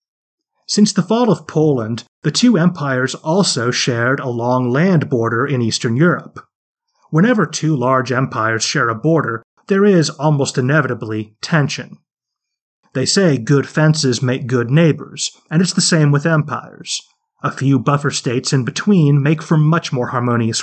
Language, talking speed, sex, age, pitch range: English, 155 wpm, male, 30-49, 125-160 Hz